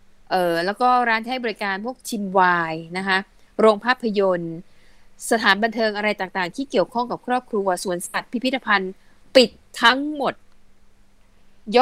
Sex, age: female, 20-39